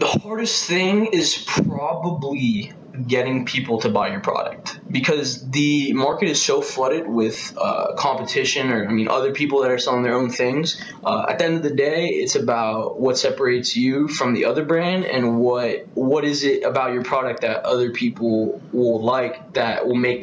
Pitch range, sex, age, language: 120-150 Hz, male, 20-39, English